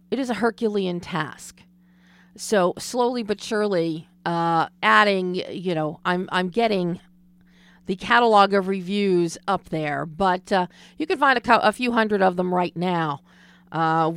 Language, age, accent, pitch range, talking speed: English, 40-59, American, 175-205 Hz, 155 wpm